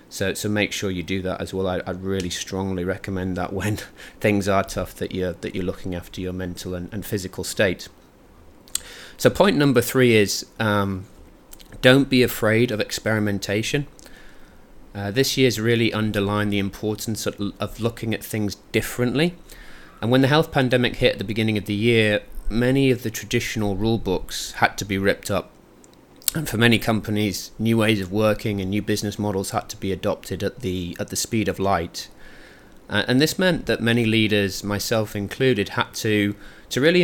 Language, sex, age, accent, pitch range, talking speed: English, male, 30-49, British, 100-115 Hz, 185 wpm